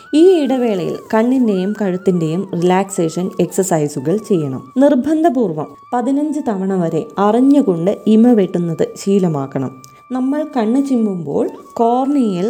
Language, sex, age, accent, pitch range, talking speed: Malayalam, female, 20-39, native, 170-245 Hz, 90 wpm